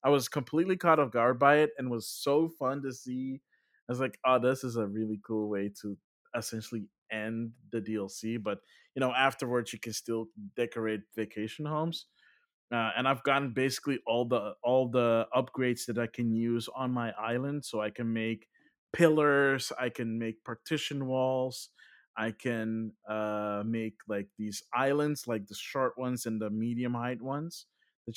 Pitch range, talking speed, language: 115-145 Hz, 175 wpm, English